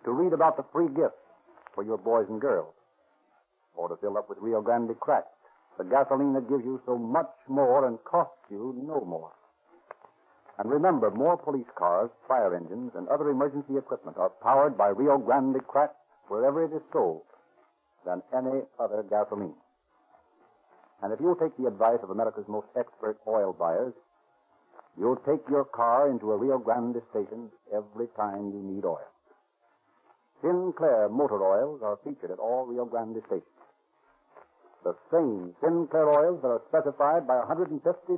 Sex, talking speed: male, 160 wpm